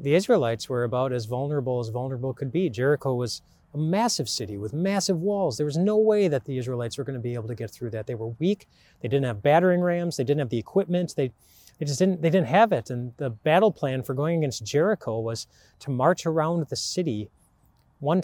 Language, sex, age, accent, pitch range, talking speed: English, male, 30-49, American, 110-145 Hz, 230 wpm